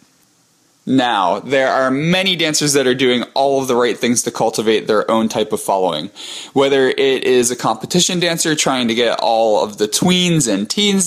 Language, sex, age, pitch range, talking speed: English, male, 20-39, 115-140 Hz, 190 wpm